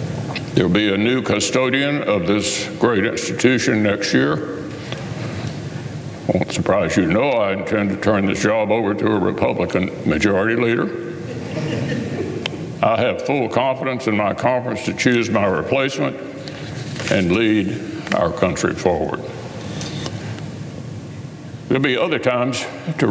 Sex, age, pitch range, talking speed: male, 60-79, 105-145 Hz, 125 wpm